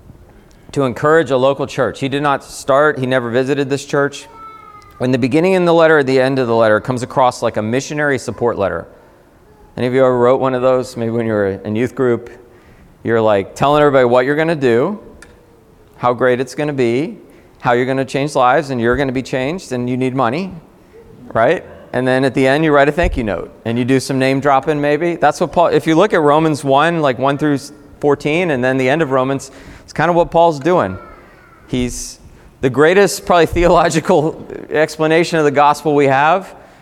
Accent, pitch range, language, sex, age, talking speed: American, 120-150 Hz, English, male, 40-59, 220 wpm